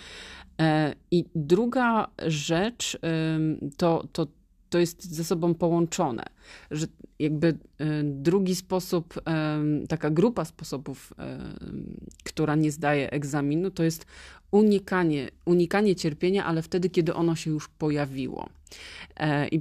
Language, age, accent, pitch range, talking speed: Polish, 30-49, native, 140-170 Hz, 100 wpm